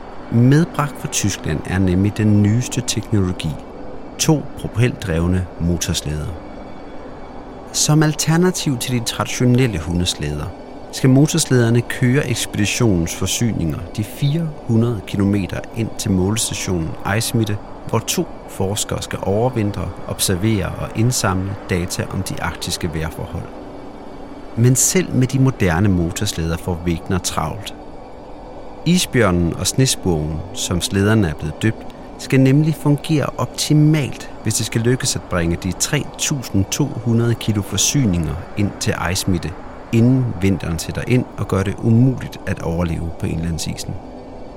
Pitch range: 90-125 Hz